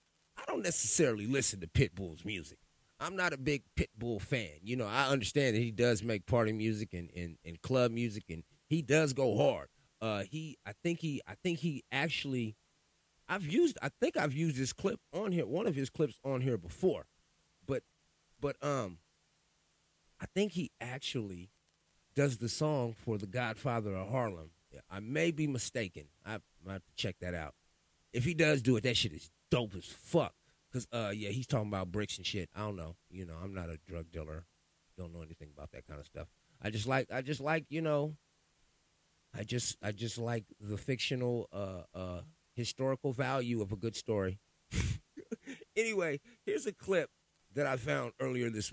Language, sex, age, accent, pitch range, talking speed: English, male, 30-49, American, 95-140 Hz, 190 wpm